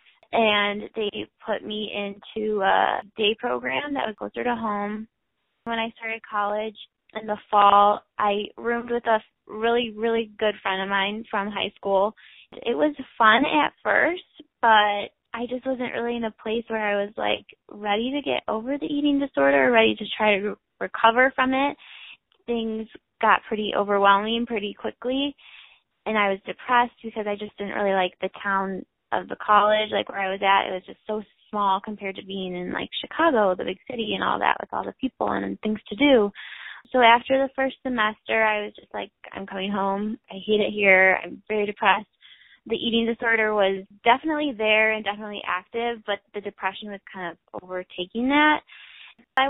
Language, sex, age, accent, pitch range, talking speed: English, female, 20-39, American, 200-235 Hz, 185 wpm